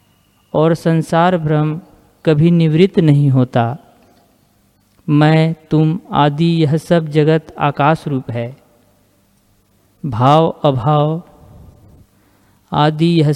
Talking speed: 90 wpm